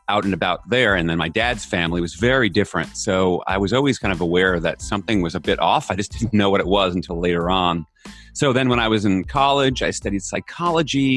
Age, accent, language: 30-49, American, English